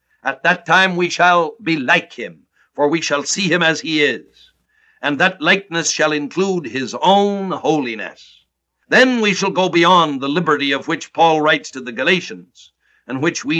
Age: 60-79